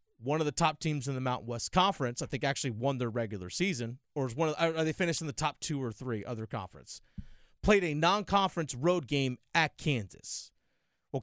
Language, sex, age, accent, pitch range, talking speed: English, male, 30-49, American, 130-180 Hz, 215 wpm